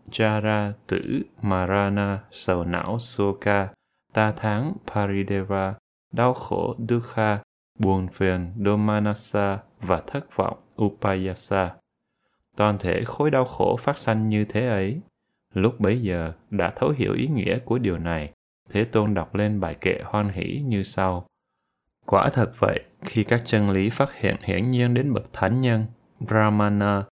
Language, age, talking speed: Vietnamese, 20-39, 145 wpm